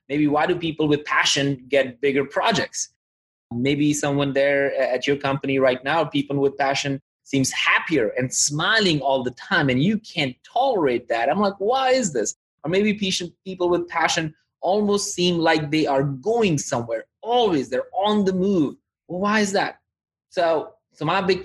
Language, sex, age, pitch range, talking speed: English, male, 20-39, 135-185 Hz, 170 wpm